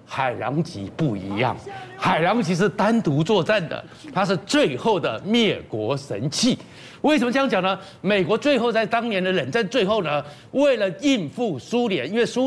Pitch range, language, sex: 170-230 Hz, Chinese, male